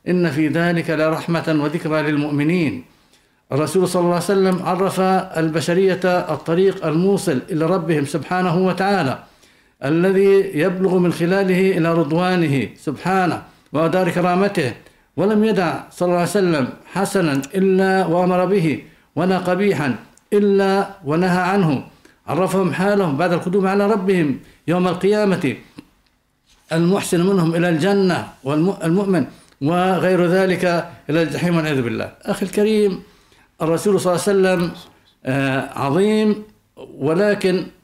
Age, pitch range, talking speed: 60-79, 155-195 Hz, 115 wpm